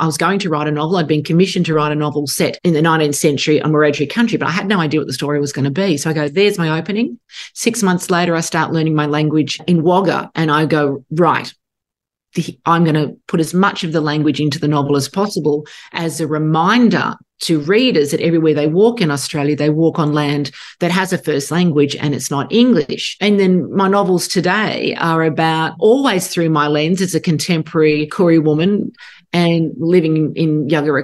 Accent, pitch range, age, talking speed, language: Australian, 150-185 Hz, 40-59, 215 wpm, English